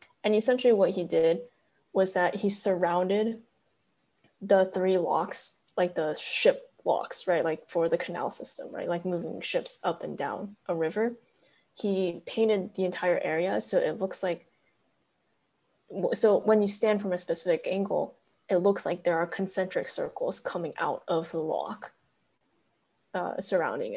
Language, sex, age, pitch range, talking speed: English, female, 20-39, 175-220 Hz, 155 wpm